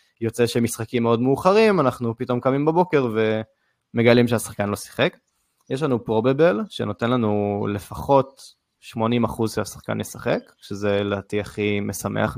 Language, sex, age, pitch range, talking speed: Hebrew, male, 20-39, 110-130 Hz, 120 wpm